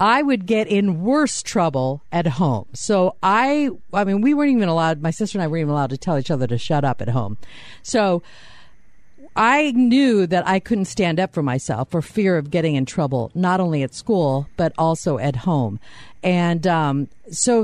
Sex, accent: female, American